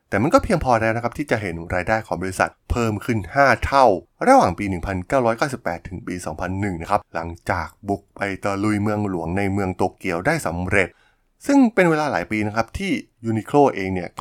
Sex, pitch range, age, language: male, 90-120 Hz, 20-39, Thai